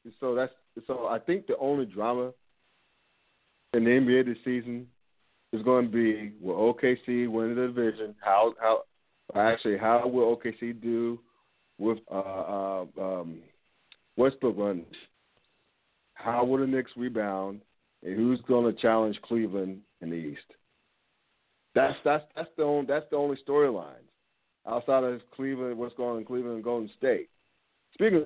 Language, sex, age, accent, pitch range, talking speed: English, male, 50-69, American, 110-125 Hz, 145 wpm